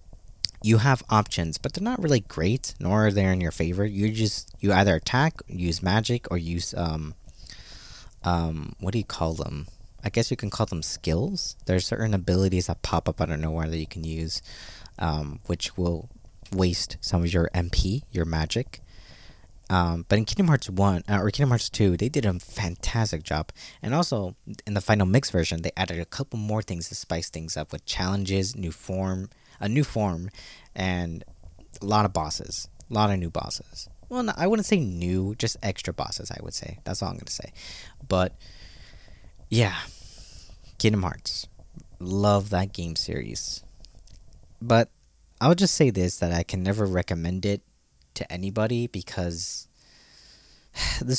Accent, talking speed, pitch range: American, 175 wpm, 85-110 Hz